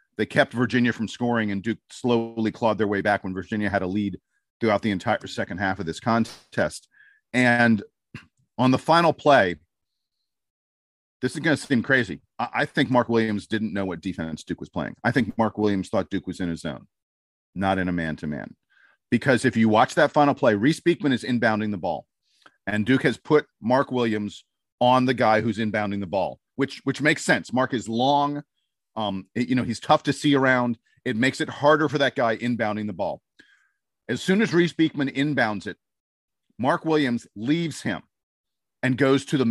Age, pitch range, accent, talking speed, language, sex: 40-59, 105-140 Hz, American, 195 wpm, English, male